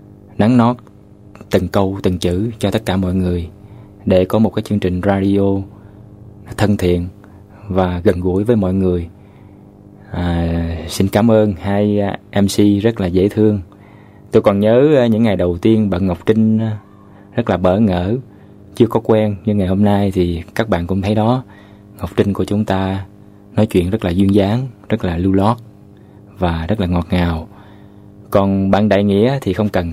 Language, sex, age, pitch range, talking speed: Vietnamese, male, 20-39, 95-105 Hz, 180 wpm